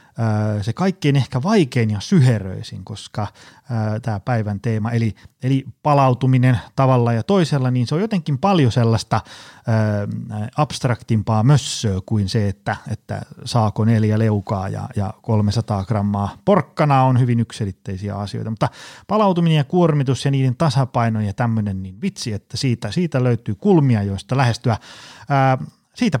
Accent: native